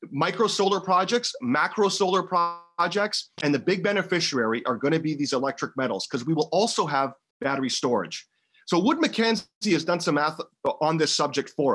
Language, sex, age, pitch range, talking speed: English, male, 30-49, 140-185 Hz, 180 wpm